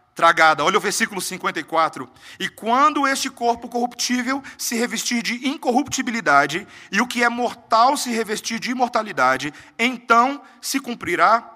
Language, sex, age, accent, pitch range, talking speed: Portuguese, male, 40-59, Brazilian, 155-240 Hz, 135 wpm